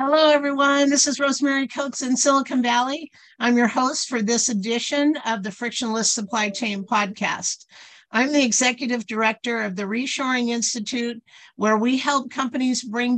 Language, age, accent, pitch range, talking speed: English, 50-69, American, 205-255 Hz, 155 wpm